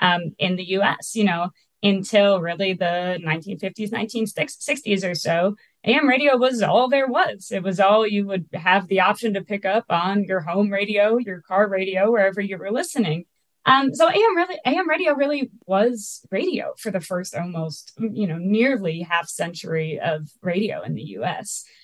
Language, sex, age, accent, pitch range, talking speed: English, female, 20-39, American, 180-230 Hz, 175 wpm